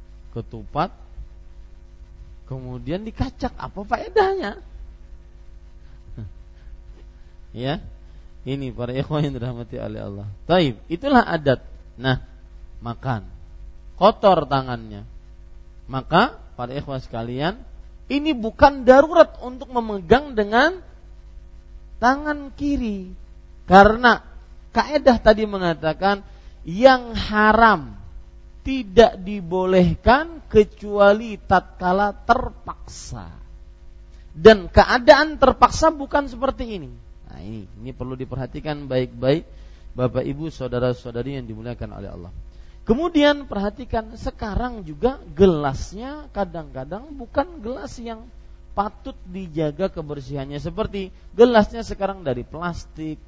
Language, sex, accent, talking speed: English, male, Indonesian, 90 wpm